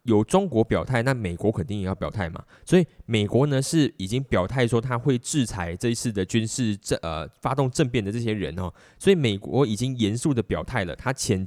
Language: Chinese